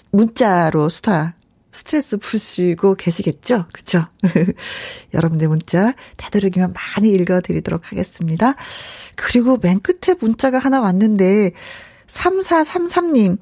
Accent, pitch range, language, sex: native, 175-250 Hz, Korean, female